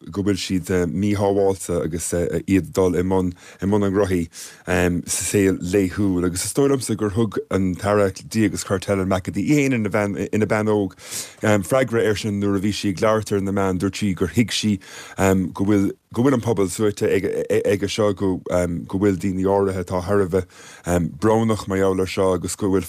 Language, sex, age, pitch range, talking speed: English, male, 30-49, 90-105 Hz, 180 wpm